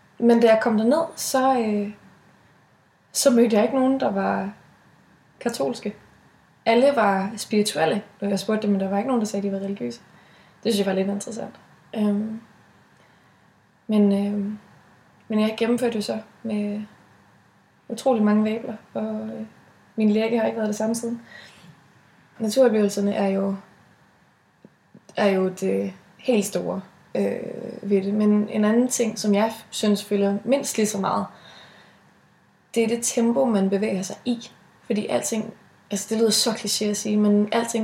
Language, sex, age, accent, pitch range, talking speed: Danish, female, 20-39, native, 200-230 Hz, 165 wpm